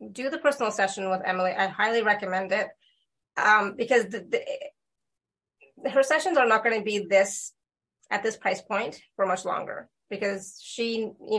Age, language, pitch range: 30-49, English, 200-240 Hz